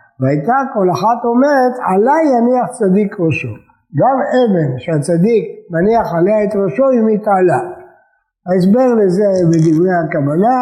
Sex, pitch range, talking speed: male, 165-225 Hz, 120 wpm